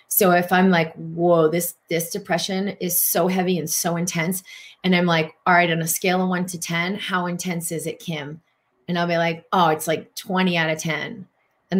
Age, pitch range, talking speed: 30-49, 165-185 Hz, 220 wpm